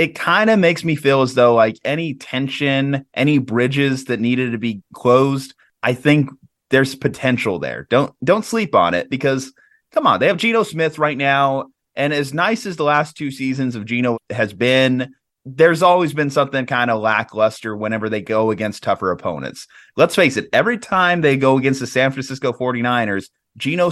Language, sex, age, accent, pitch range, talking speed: English, male, 20-39, American, 115-145 Hz, 190 wpm